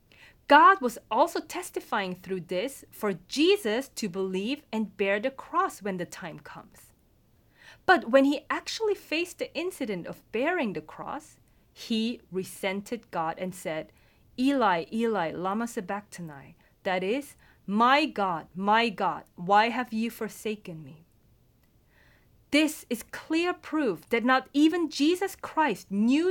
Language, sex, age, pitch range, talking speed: English, female, 30-49, 190-275 Hz, 135 wpm